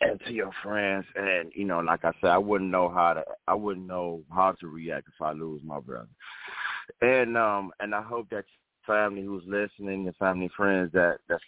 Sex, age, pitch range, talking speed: male, 30-49, 85-105 Hz, 210 wpm